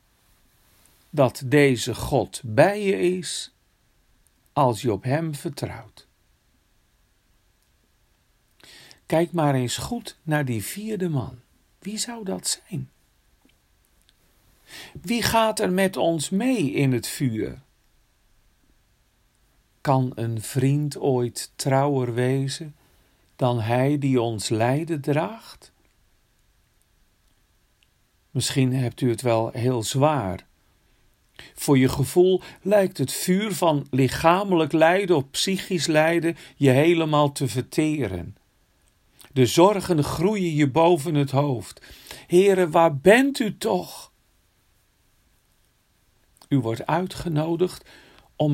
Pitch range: 125-175 Hz